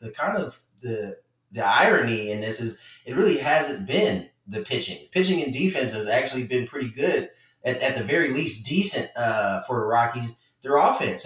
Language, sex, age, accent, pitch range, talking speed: English, male, 30-49, American, 135-185 Hz, 185 wpm